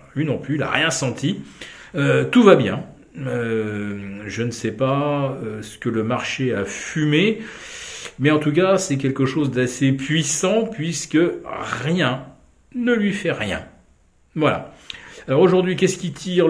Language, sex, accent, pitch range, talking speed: French, male, French, 110-155 Hz, 160 wpm